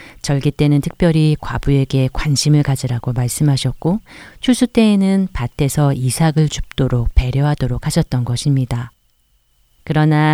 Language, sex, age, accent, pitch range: Korean, female, 40-59, native, 125-165 Hz